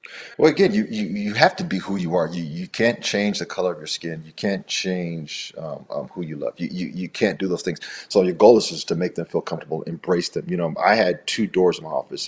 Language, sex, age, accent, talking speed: English, male, 40-59, American, 275 wpm